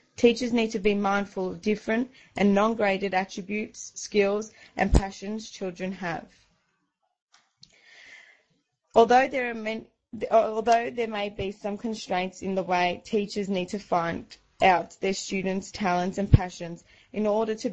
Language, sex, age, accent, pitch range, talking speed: English, female, 20-39, Australian, 180-215 Hz, 130 wpm